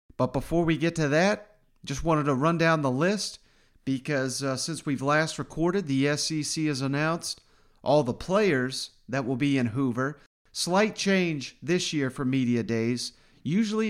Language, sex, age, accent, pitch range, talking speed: English, male, 40-59, American, 135-160 Hz, 170 wpm